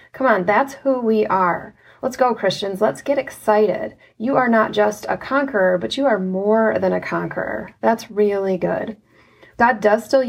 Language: English